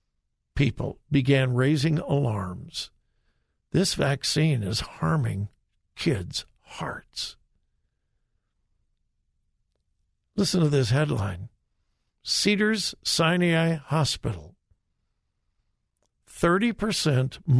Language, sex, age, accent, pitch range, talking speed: English, male, 60-79, American, 110-160 Hz, 60 wpm